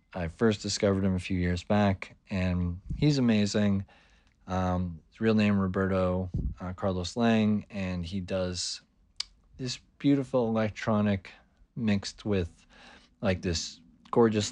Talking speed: 125 wpm